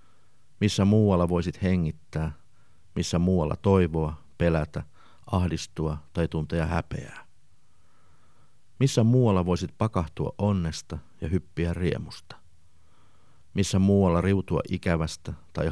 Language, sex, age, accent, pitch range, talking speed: Finnish, male, 50-69, native, 80-95 Hz, 95 wpm